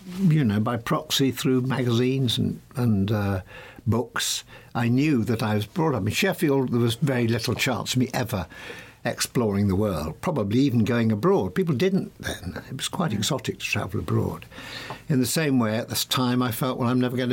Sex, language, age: male, English, 60-79